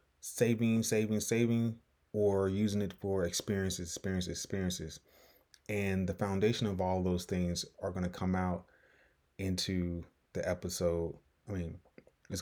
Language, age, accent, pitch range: English, 20-39, American, 85-105 Hz